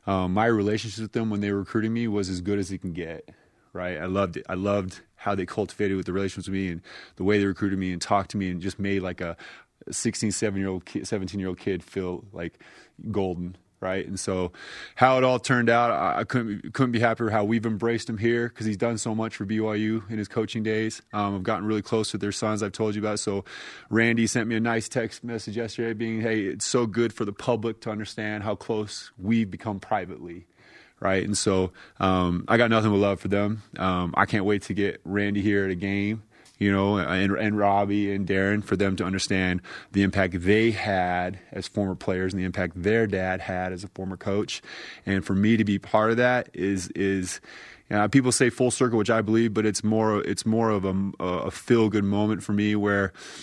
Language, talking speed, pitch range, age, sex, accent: English, 225 wpm, 95-110 Hz, 20-39, male, American